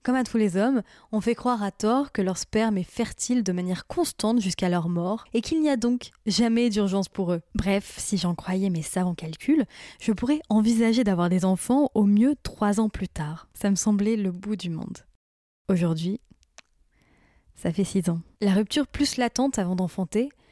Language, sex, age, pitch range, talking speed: French, female, 10-29, 185-235 Hz, 195 wpm